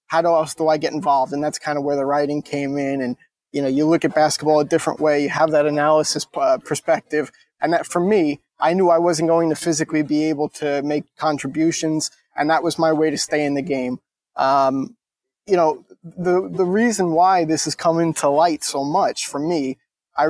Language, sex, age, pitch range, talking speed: English, male, 20-39, 150-175 Hz, 215 wpm